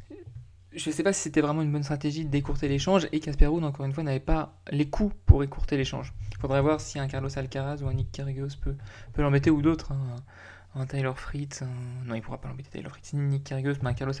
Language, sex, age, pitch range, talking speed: French, male, 20-39, 125-150 Hz, 245 wpm